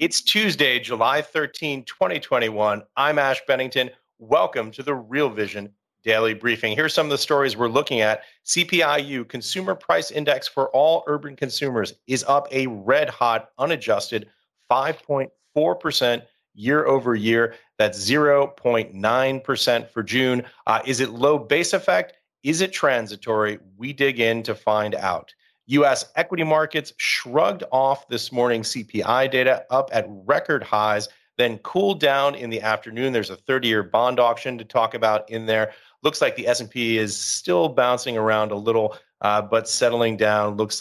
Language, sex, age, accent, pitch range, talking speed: English, male, 30-49, American, 110-140 Hz, 150 wpm